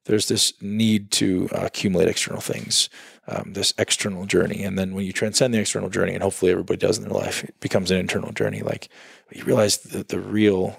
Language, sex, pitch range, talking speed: English, male, 95-110 Hz, 210 wpm